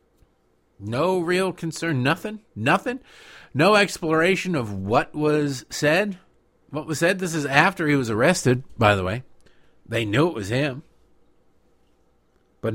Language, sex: English, male